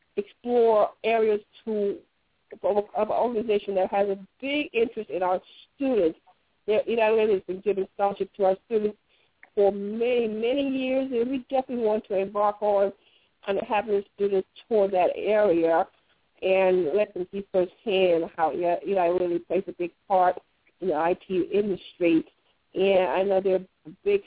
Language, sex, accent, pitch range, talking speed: English, female, American, 185-220 Hz, 165 wpm